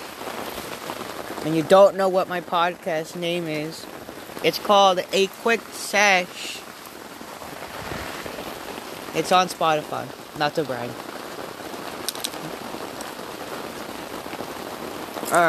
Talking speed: 80 wpm